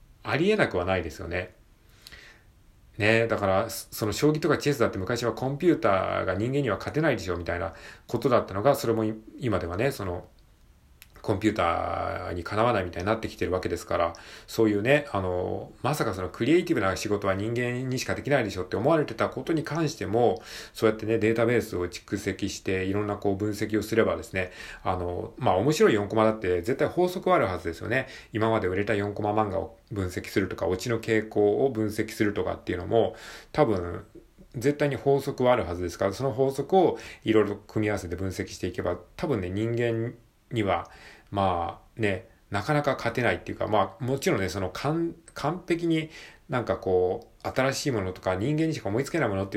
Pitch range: 95-135 Hz